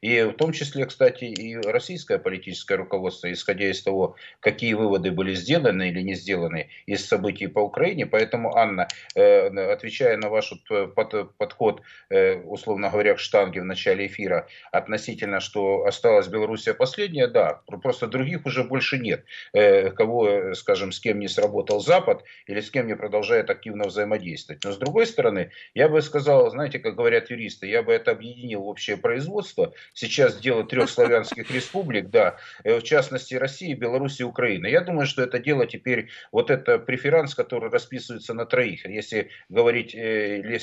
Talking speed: 155 wpm